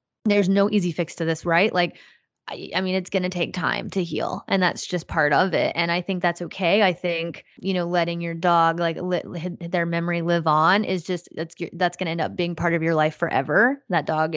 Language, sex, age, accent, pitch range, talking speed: English, female, 20-39, American, 165-180 Hz, 230 wpm